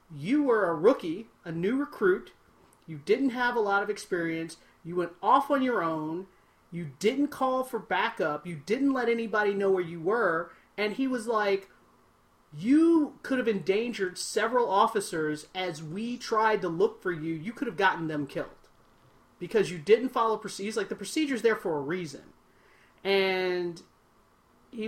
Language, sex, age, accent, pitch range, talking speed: English, male, 30-49, American, 175-245 Hz, 170 wpm